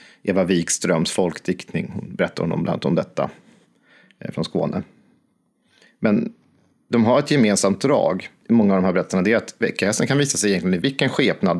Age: 40-59